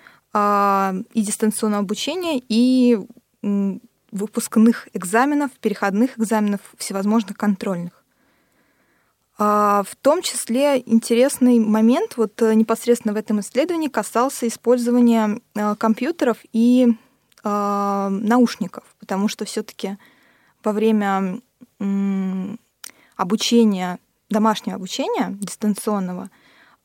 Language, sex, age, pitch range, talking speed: Russian, female, 20-39, 200-235 Hz, 75 wpm